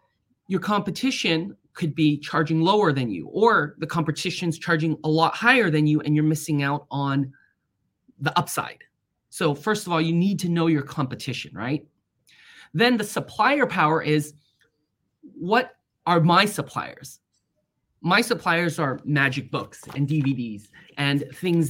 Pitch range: 145-175 Hz